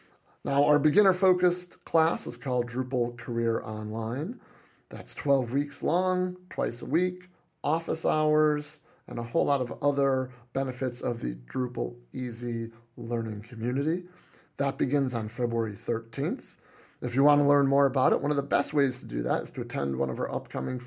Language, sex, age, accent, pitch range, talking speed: English, male, 30-49, American, 120-150 Hz, 165 wpm